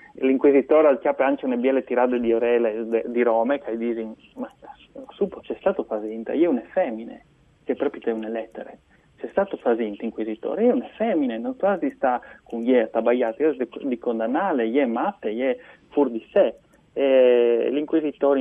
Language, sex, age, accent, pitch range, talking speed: Italian, male, 30-49, native, 115-135 Hz, 190 wpm